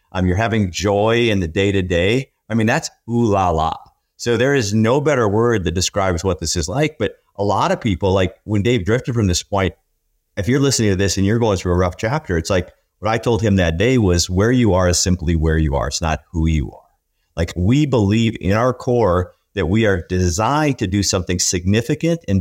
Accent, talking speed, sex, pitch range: American, 225 wpm, male, 90-115 Hz